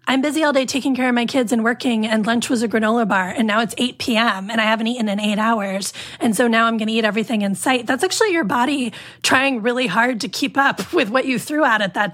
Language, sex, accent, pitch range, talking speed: English, female, American, 220-265 Hz, 275 wpm